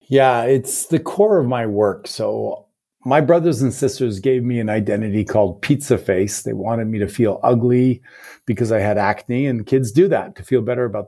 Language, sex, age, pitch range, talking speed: English, male, 40-59, 110-130 Hz, 200 wpm